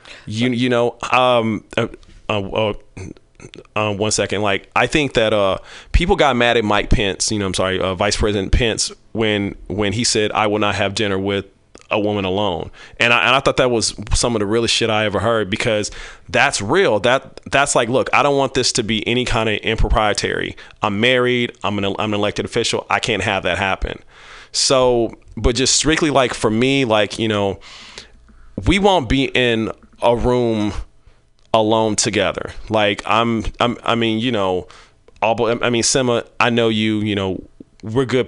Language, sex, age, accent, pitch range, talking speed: English, male, 40-59, American, 105-125 Hz, 190 wpm